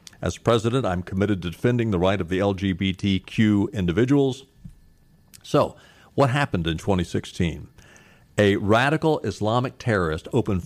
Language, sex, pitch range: English, male, 95-120 Hz